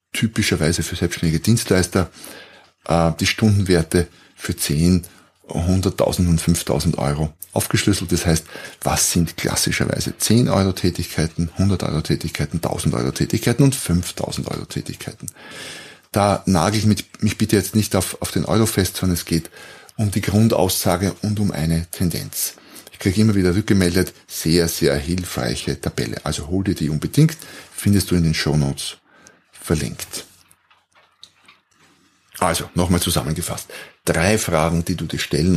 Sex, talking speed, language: male, 125 wpm, German